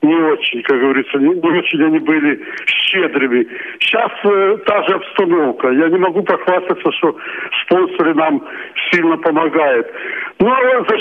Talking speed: 140 wpm